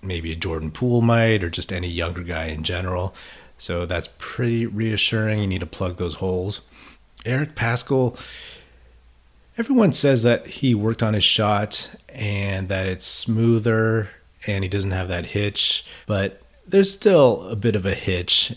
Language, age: English, 30-49